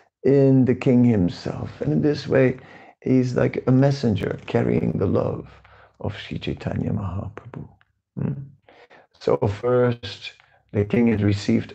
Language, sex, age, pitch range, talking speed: English, male, 50-69, 110-135 Hz, 135 wpm